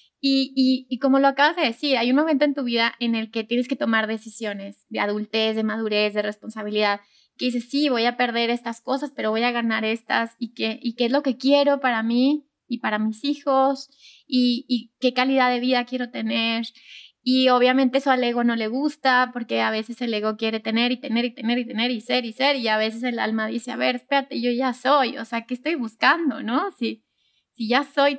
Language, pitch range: Spanish, 225-270 Hz